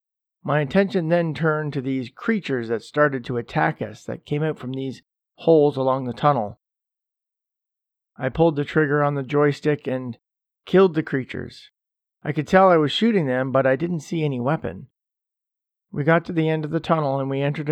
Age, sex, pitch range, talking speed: 40-59, male, 130-160 Hz, 190 wpm